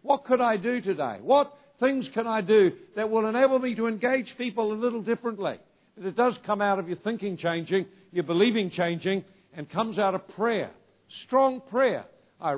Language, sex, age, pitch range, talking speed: English, male, 60-79, 170-230 Hz, 190 wpm